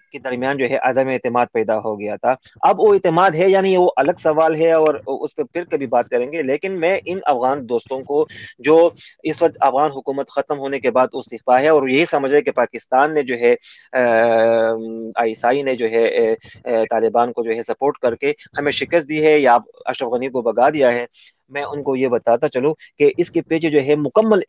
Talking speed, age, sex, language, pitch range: 220 wpm, 20-39, male, Urdu, 130-160 Hz